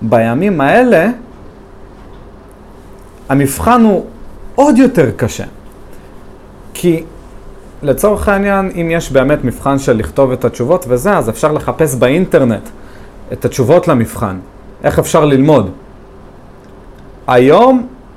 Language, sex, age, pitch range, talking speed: Hebrew, male, 40-59, 105-165 Hz, 100 wpm